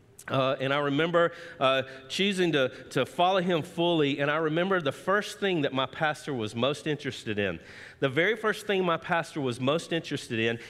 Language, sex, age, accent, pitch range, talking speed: English, male, 40-59, American, 130-180 Hz, 190 wpm